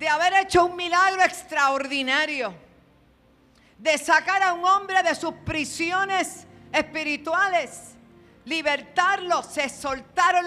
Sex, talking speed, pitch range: female, 105 wpm, 255-330 Hz